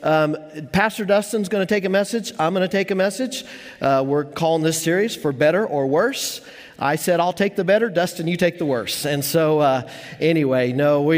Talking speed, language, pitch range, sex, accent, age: 215 wpm, English, 145-180 Hz, male, American, 40-59